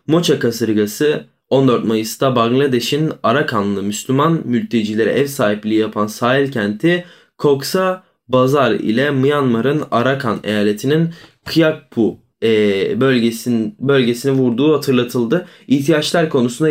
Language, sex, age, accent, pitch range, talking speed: Turkish, male, 20-39, native, 115-150 Hz, 90 wpm